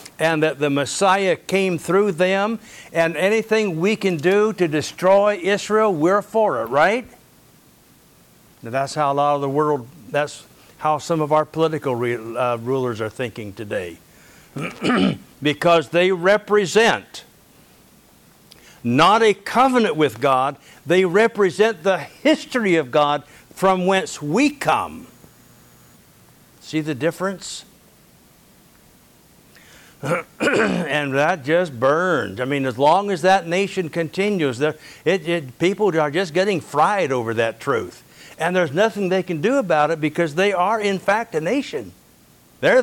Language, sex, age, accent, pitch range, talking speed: English, male, 60-79, American, 150-195 Hz, 135 wpm